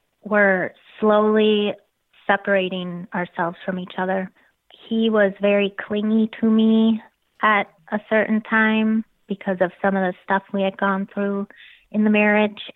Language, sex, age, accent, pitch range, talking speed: English, female, 20-39, American, 185-210 Hz, 145 wpm